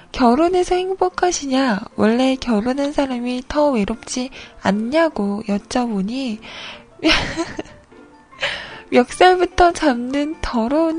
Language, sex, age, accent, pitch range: Korean, female, 20-39, native, 225-330 Hz